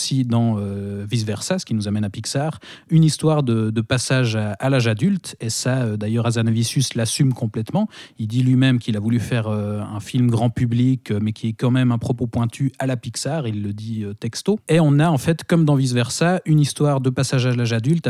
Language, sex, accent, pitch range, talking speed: French, male, French, 115-140 Hz, 230 wpm